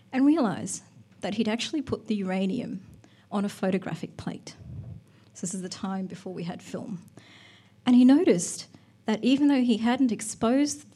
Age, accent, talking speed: 30-49, Australian, 165 wpm